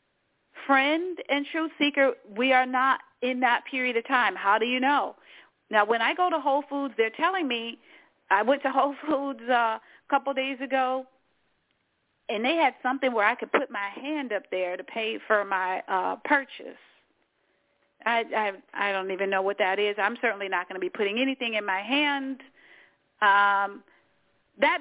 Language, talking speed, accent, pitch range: English, 180 wpm, American, 230-295 Hz